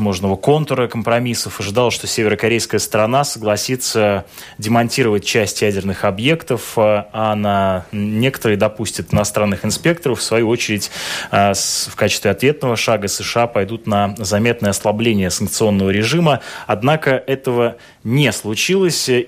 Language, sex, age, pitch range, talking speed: Russian, male, 20-39, 105-120 Hz, 110 wpm